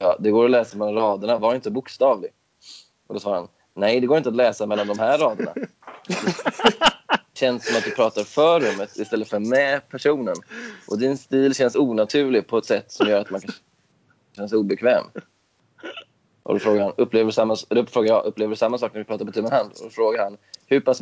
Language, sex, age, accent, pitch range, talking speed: Swedish, male, 20-39, native, 105-125 Hz, 215 wpm